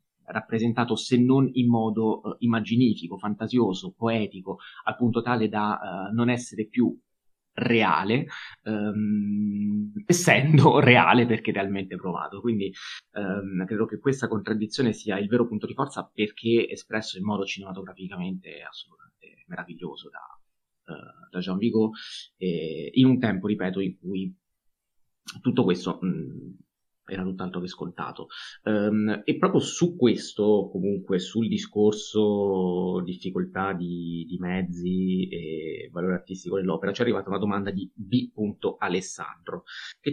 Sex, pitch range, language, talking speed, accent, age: male, 95-120 Hz, Italian, 125 wpm, native, 30-49